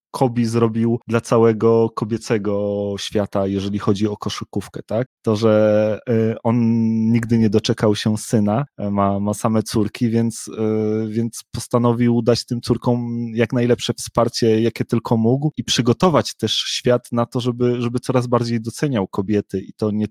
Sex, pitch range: male, 105-115 Hz